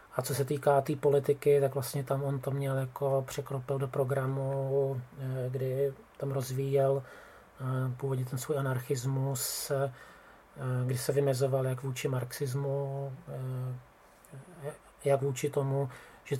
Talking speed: 115 wpm